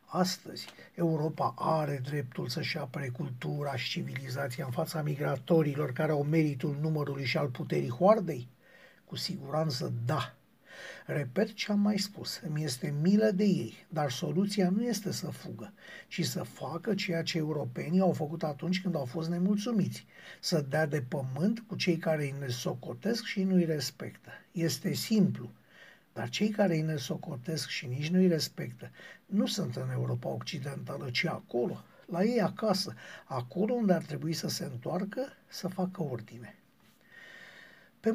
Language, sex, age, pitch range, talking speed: Romanian, male, 60-79, 150-190 Hz, 155 wpm